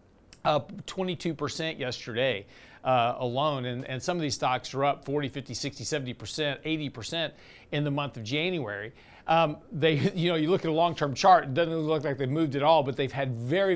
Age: 40-59